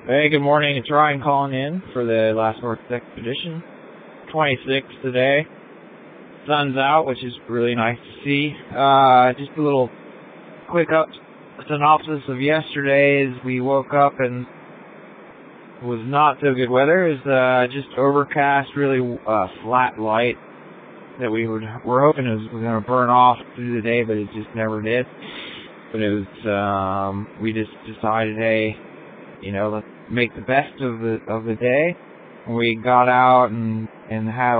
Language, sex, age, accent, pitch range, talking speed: English, male, 20-39, American, 110-130 Hz, 165 wpm